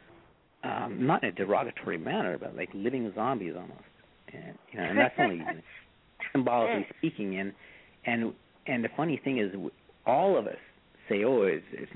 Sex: male